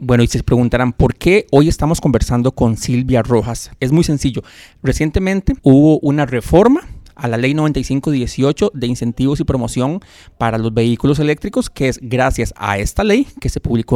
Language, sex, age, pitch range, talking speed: Spanish, male, 30-49, 120-145 Hz, 170 wpm